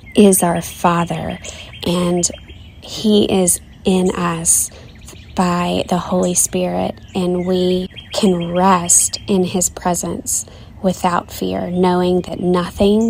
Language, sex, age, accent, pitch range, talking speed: English, female, 20-39, American, 165-185 Hz, 110 wpm